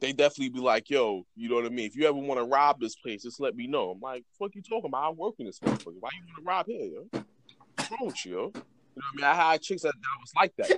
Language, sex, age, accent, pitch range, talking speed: English, male, 20-39, American, 120-160 Hz, 305 wpm